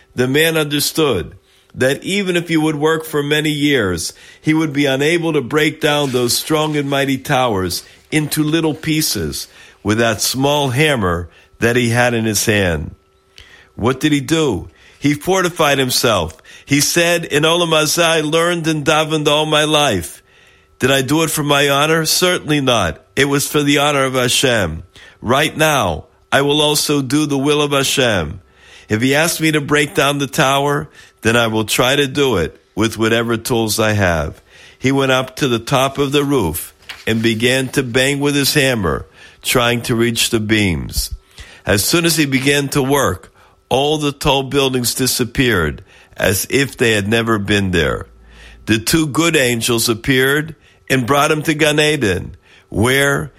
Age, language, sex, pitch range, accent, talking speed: 50-69, English, male, 115-150 Hz, American, 175 wpm